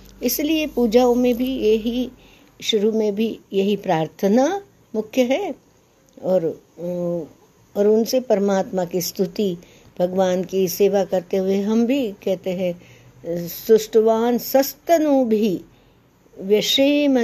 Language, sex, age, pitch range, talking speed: Hindi, female, 60-79, 175-235 Hz, 110 wpm